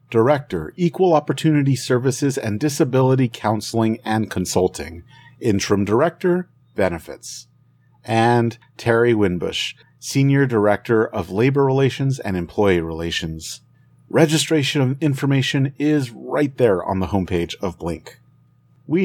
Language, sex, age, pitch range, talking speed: English, male, 40-59, 105-135 Hz, 110 wpm